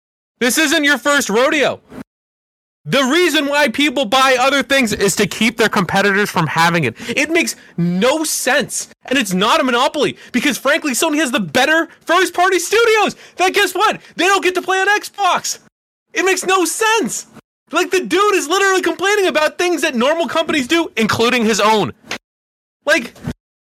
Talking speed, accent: 170 wpm, American